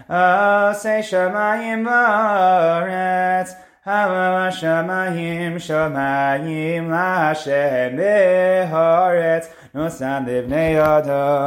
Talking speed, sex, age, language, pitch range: 50 wpm, male, 30-49, English, 155-190 Hz